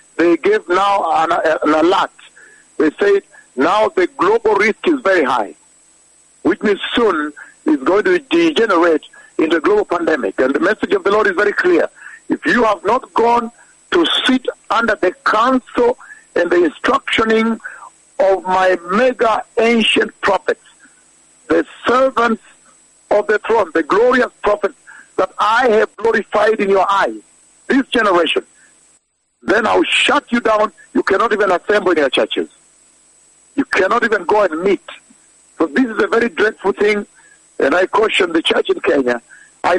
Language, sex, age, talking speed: English, male, 60-79, 155 wpm